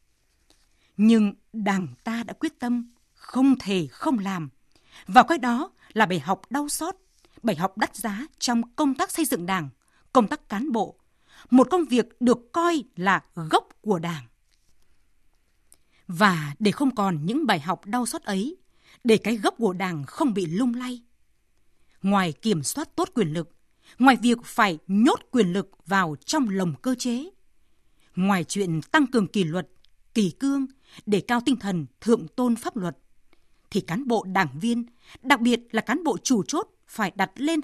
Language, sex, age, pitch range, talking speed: Vietnamese, female, 20-39, 185-250 Hz, 170 wpm